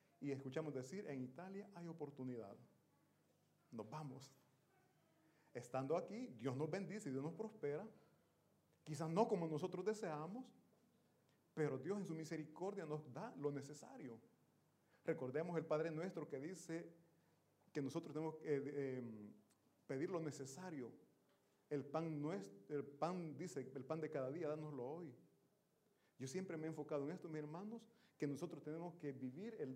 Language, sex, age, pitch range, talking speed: Italian, male, 40-59, 140-175 Hz, 150 wpm